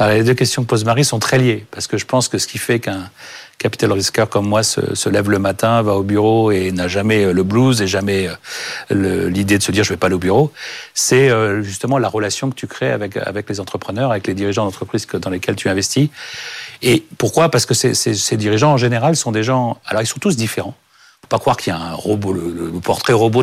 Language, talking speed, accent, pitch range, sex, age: French, 250 wpm, French, 100-125 Hz, male, 40-59